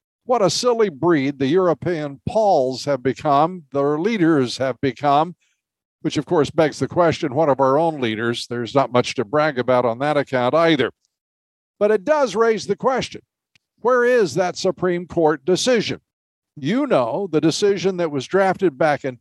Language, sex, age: English, male, 60-79